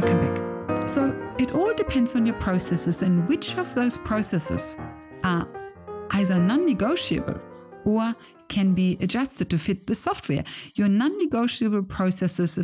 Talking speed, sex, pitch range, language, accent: 145 wpm, female, 175-245 Hz, English, German